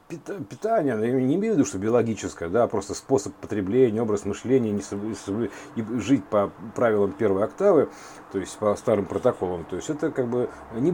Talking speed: 165 wpm